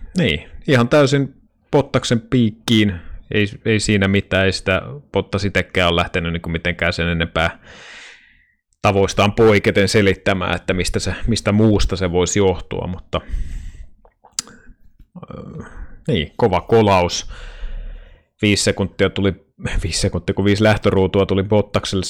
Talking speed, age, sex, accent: 115 wpm, 30-49, male, native